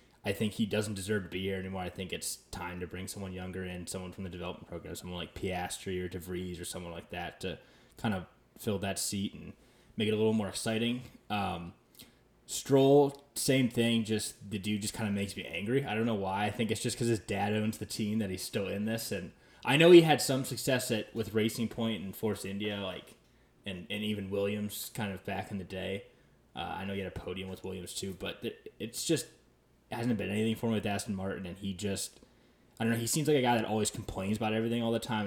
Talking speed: 245 wpm